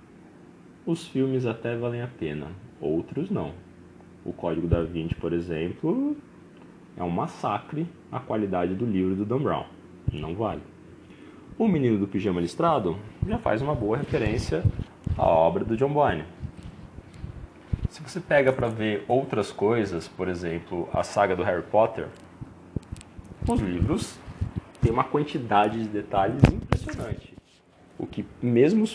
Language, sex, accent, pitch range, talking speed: Portuguese, male, Brazilian, 90-130 Hz, 140 wpm